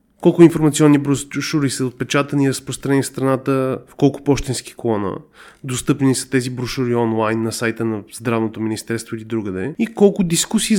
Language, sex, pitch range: Bulgarian, male, 120-170 Hz